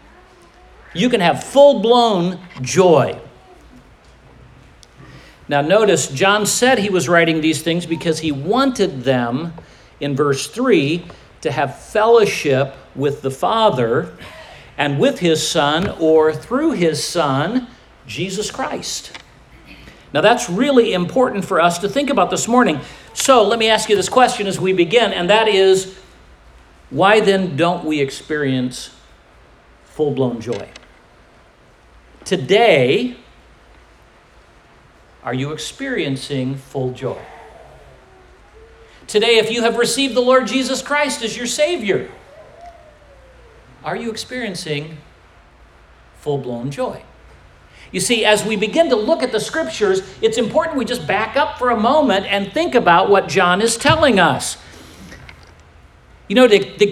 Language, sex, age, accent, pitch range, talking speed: English, male, 50-69, American, 140-235 Hz, 130 wpm